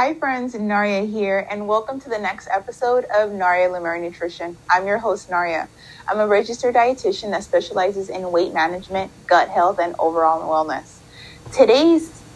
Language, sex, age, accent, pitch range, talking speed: English, female, 30-49, American, 170-215 Hz, 160 wpm